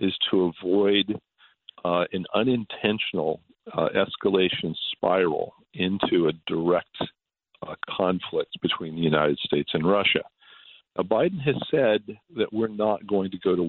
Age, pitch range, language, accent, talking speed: 50-69, 95-110 Hz, English, American, 130 wpm